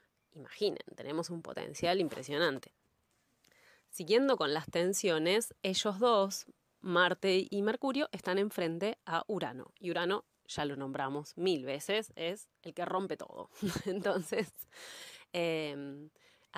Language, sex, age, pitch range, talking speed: Spanish, female, 20-39, 155-195 Hz, 115 wpm